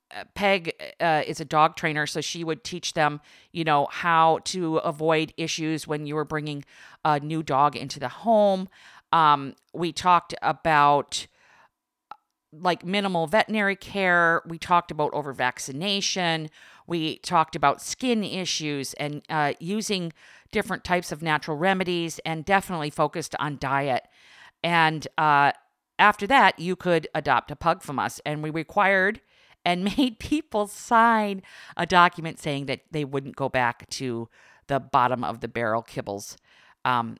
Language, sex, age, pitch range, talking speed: English, female, 50-69, 145-195 Hz, 150 wpm